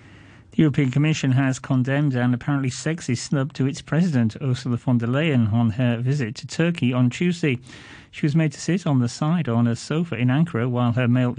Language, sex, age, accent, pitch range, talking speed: English, male, 40-59, British, 120-155 Hz, 205 wpm